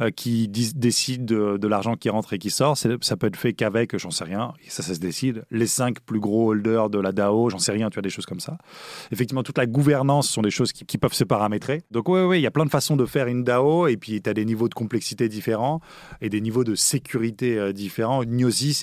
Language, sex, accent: French, male, French